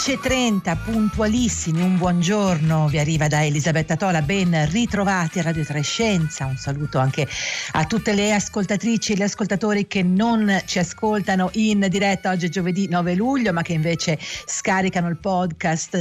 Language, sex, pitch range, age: Italian, female, 165-205 Hz, 50-69